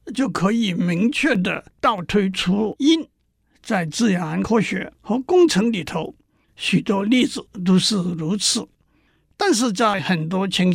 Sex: male